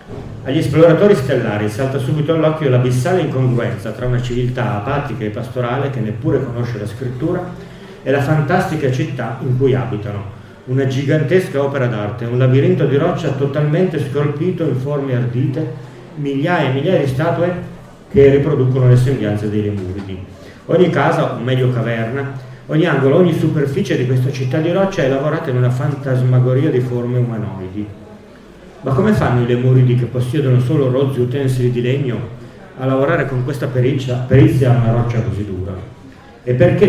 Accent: native